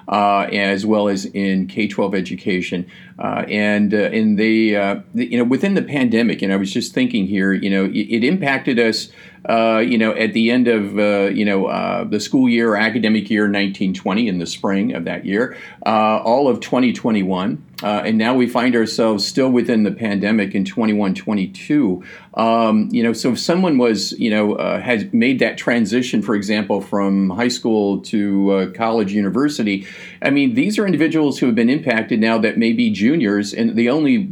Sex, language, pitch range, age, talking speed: male, English, 105-125 Hz, 50-69, 210 wpm